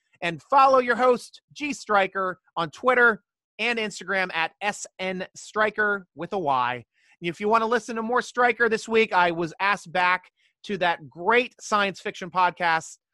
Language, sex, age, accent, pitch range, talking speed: English, male, 30-49, American, 165-220 Hz, 160 wpm